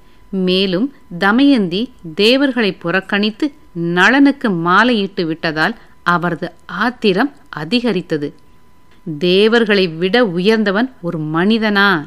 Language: Tamil